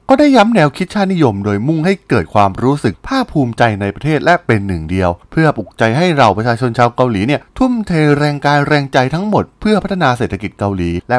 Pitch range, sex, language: 105-155 Hz, male, Thai